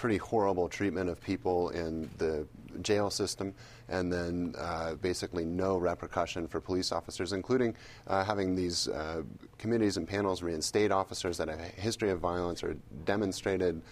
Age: 30-49